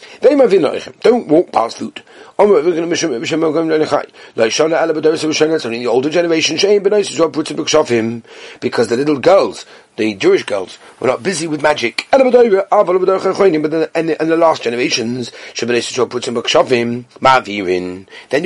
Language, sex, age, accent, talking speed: English, male, 40-59, British, 100 wpm